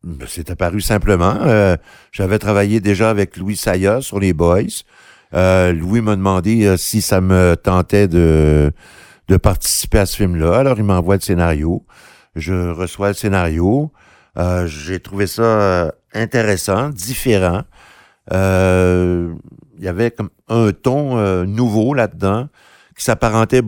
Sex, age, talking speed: male, 60-79, 140 wpm